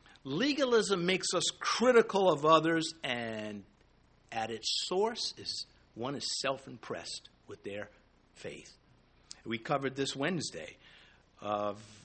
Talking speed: 110 wpm